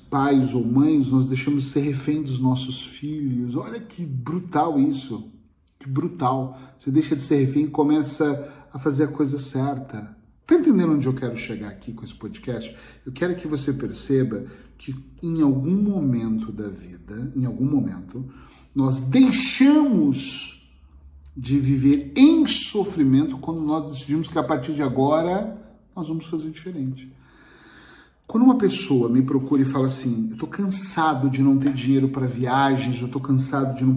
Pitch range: 130-165 Hz